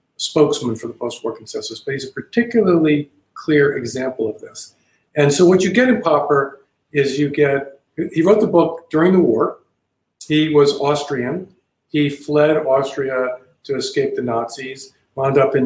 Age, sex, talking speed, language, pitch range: 50-69, male, 165 wpm, English, 125-165 Hz